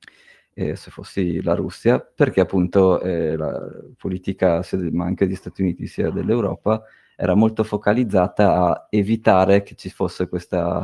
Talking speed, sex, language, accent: 145 wpm, male, Italian, native